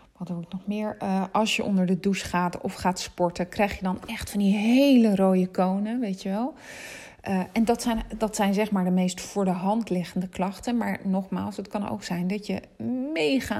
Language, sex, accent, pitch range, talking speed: Dutch, female, Dutch, 180-225 Hz, 225 wpm